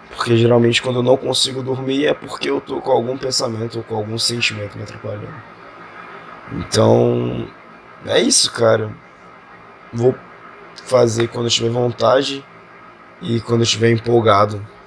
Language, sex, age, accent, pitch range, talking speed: Portuguese, male, 20-39, Brazilian, 110-130 Hz, 140 wpm